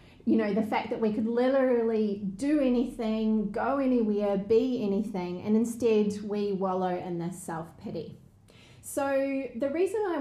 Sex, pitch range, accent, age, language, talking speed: female, 185-240 Hz, Australian, 30-49, English, 145 wpm